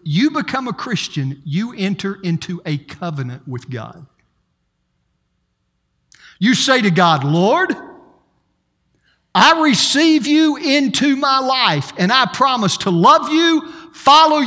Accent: American